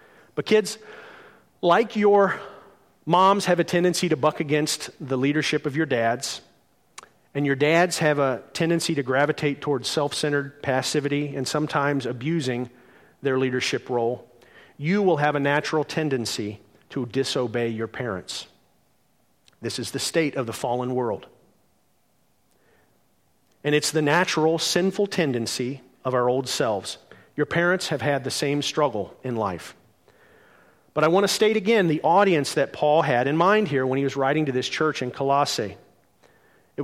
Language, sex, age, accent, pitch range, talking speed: English, male, 40-59, American, 125-155 Hz, 155 wpm